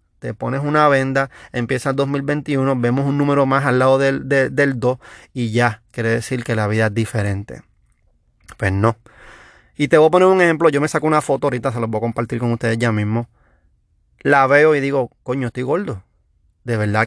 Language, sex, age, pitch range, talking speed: Spanish, male, 30-49, 120-145 Hz, 205 wpm